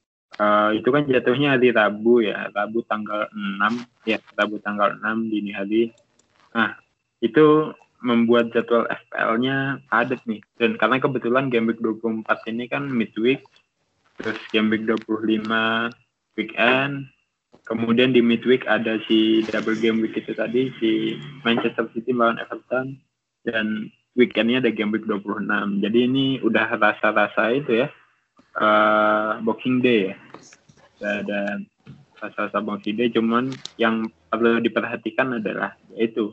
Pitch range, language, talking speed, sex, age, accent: 105-120 Hz, Indonesian, 120 wpm, male, 20-39, native